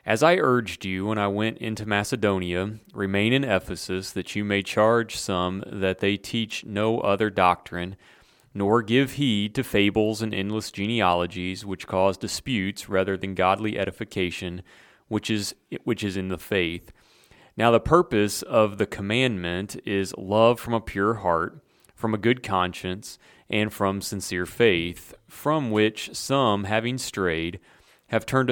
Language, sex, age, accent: English, male, 30-49, American